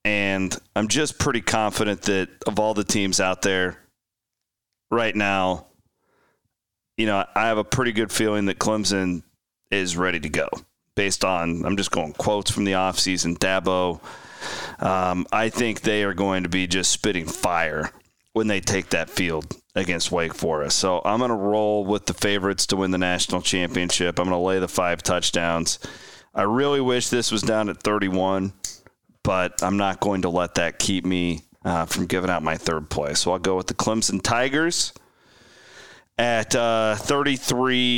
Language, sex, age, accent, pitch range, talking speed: English, male, 30-49, American, 90-115 Hz, 175 wpm